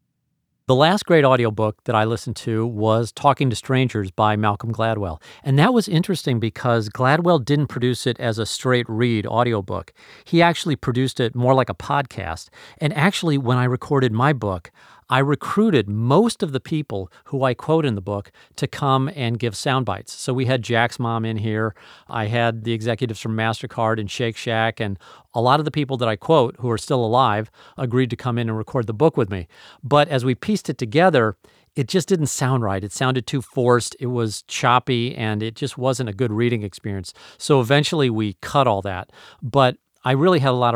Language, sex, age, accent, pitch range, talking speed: English, male, 40-59, American, 110-135 Hz, 205 wpm